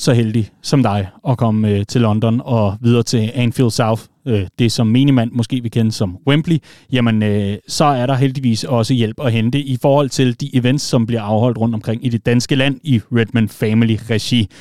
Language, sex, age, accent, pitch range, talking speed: Danish, male, 30-49, native, 115-150 Hz, 210 wpm